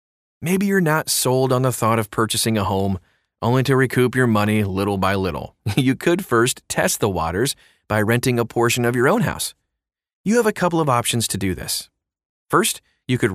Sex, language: male, English